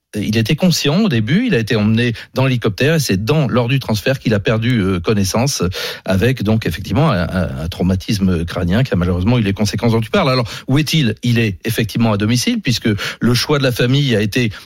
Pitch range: 100-125 Hz